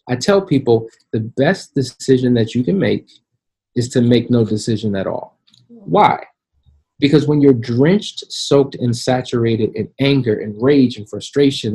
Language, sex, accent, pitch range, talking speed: English, male, American, 115-140 Hz, 160 wpm